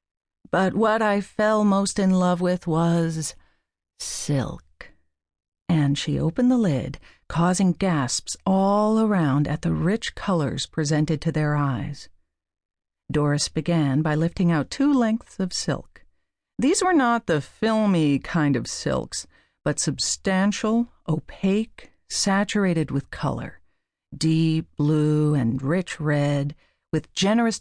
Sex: female